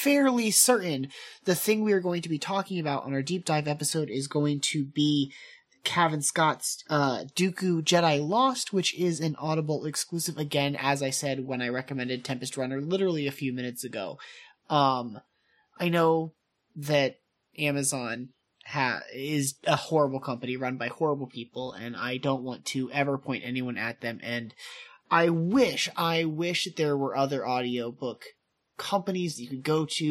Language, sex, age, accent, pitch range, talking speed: English, male, 30-49, American, 130-170 Hz, 165 wpm